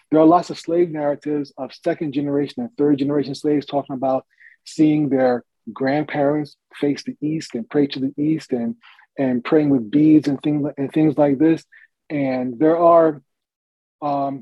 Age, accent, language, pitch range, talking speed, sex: 30-49, American, English, 130-155 Hz, 170 wpm, male